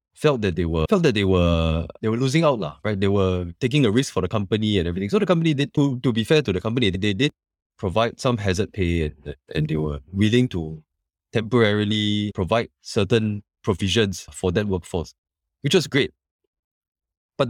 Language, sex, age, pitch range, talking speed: English, male, 20-39, 95-145 Hz, 200 wpm